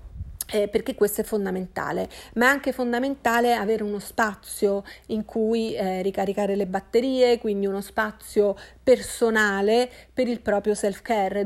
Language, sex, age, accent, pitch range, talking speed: Italian, female, 40-59, native, 200-225 Hz, 135 wpm